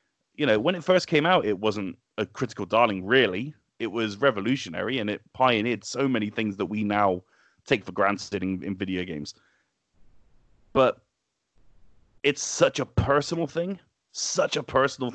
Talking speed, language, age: 160 wpm, English, 30-49